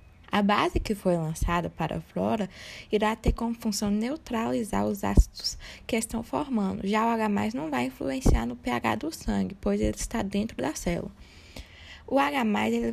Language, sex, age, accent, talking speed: Portuguese, female, 10-29, Brazilian, 170 wpm